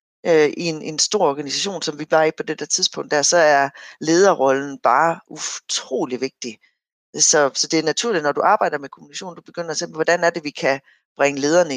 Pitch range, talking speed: 135-175 Hz, 205 wpm